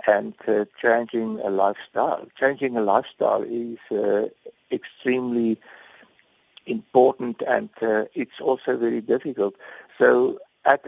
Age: 60-79